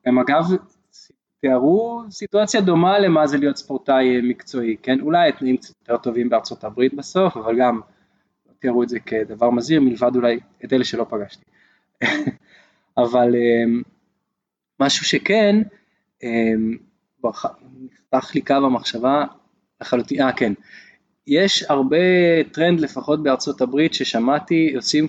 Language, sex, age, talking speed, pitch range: Hebrew, male, 20-39, 115 wpm, 125-160 Hz